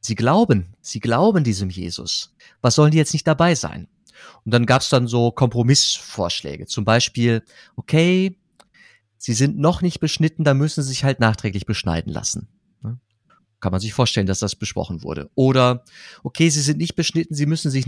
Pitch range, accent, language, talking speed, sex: 105-145 Hz, German, German, 180 wpm, male